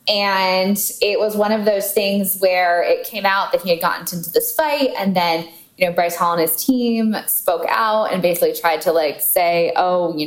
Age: 10-29